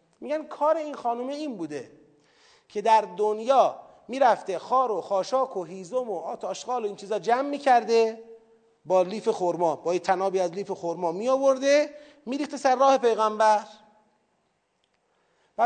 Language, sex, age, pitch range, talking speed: Persian, male, 40-59, 210-260 Hz, 140 wpm